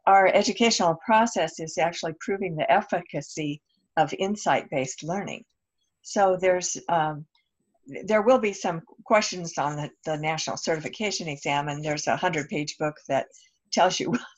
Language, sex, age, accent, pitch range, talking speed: English, female, 60-79, American, 155-200 Hz, 140 wpm